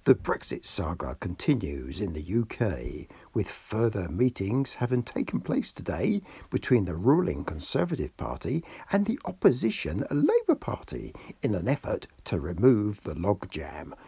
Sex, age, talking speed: male, 60-79, 130 wpm